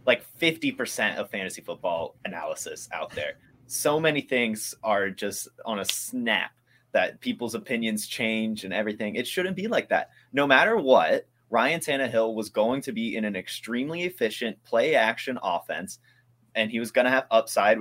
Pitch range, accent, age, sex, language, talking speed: 105-140 Hz, American, 20-39, male, English, 170 wpm